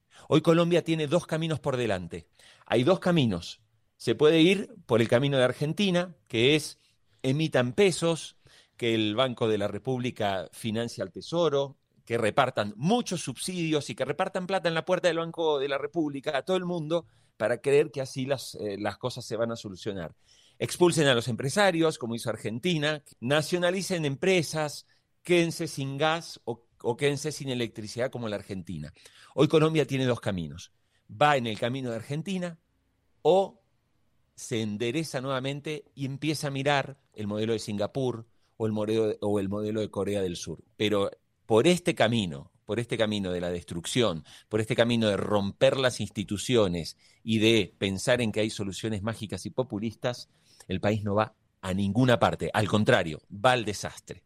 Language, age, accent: Spanish, 40-59, Argentinian